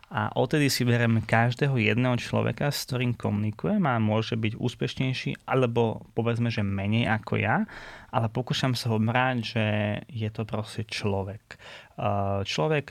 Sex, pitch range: male, 110-125 Hz